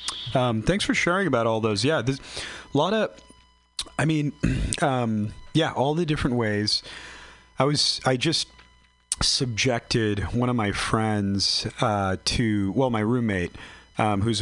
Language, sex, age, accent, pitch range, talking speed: English, male, 30-49, American, 95-120 Hz, 150 wpm